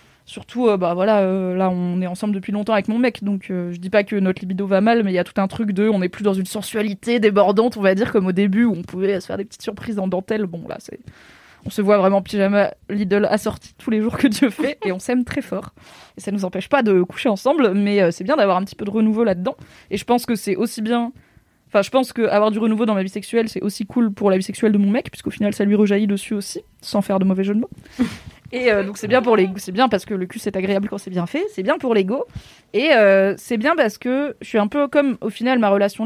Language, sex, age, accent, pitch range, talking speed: French, female, 20-39, French, 195-235 Hz, 295 wpm